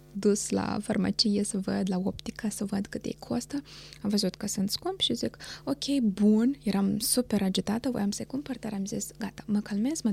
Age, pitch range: 20-39, 190-240 Hz